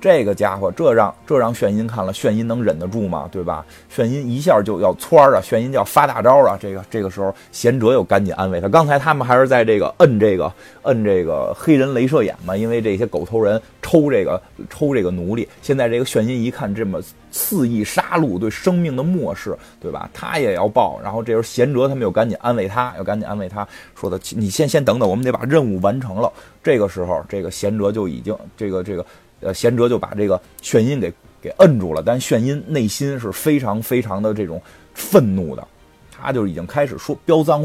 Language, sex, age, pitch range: Chinese, male, 30-49, 95-125 Hz